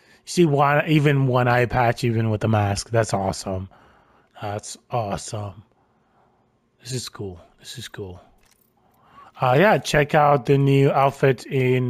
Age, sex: 20-39, male